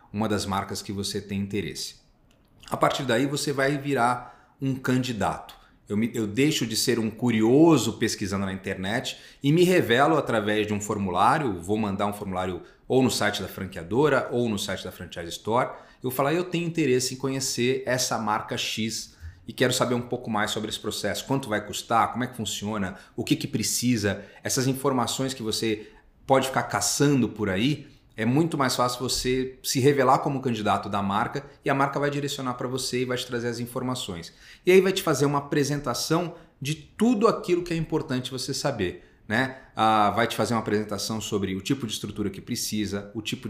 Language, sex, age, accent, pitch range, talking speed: Portuguese, male, 30-49, Brazilian, 105-130 Hz, 195 wpm